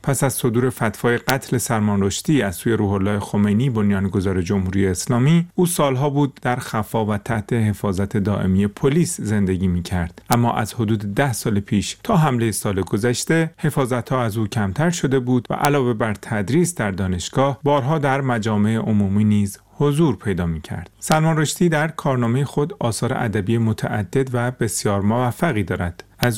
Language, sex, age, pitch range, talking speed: Persian, male, 40-59, 100-135 Hz, 150 wpm